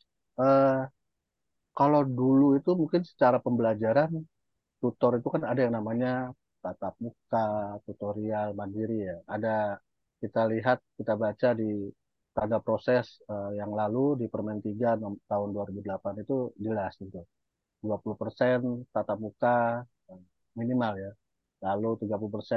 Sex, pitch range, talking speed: male, 105-125 Hz, 115 wpm